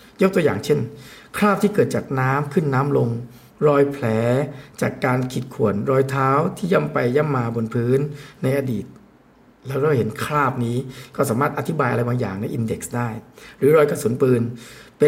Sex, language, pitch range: male, Thai, 125-160 Hz